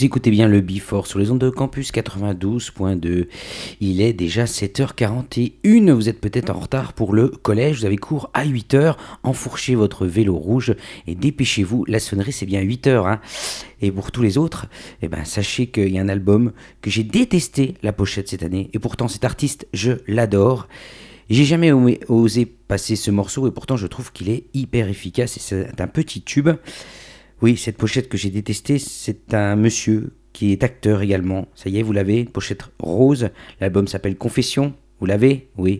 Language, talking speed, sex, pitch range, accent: French, 190 wpm, male, 100-125 Hz, French